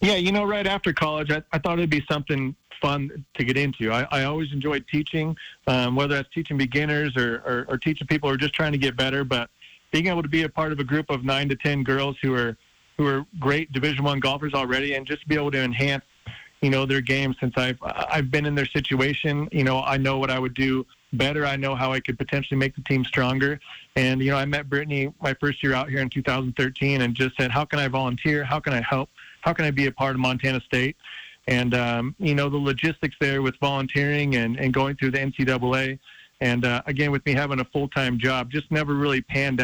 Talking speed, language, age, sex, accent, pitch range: 245 wpm, English, 30-49, male, American, 130-145 Hz